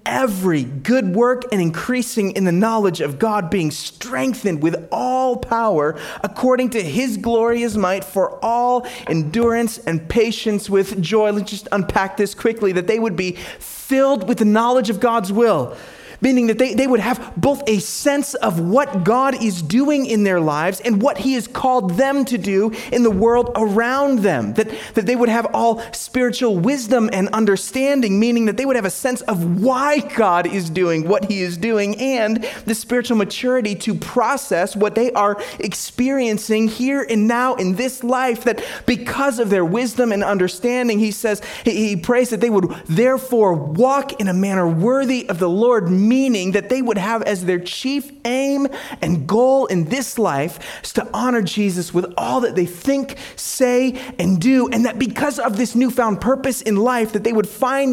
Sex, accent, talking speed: male, American, 185 wpm